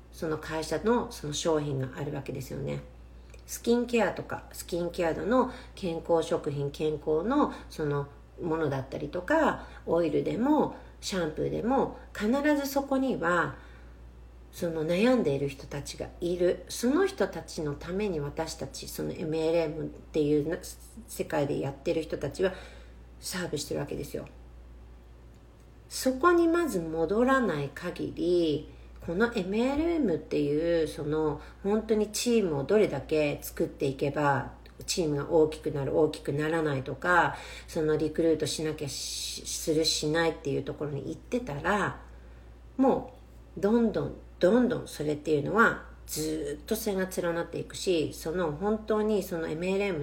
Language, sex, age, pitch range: Japanese, female, 50-69, 140-185 Hz